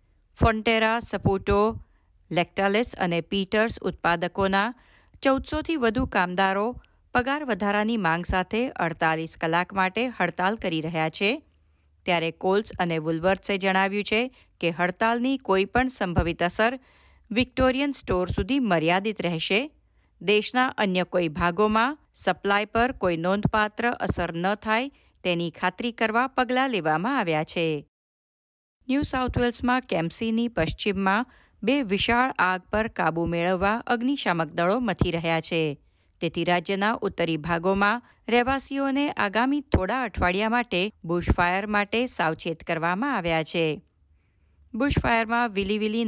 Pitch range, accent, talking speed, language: 170-230 Hz, native, 100 wpm, Gujarati